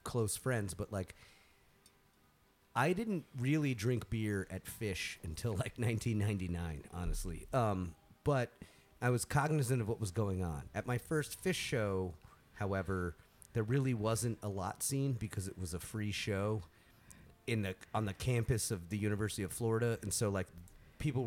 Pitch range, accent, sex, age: 100-125 Hz, American, male, 30-49